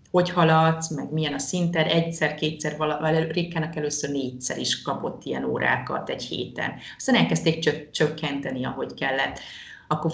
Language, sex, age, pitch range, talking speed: Hungarian, female, 30-49, 150-175 Hz, 135 wpm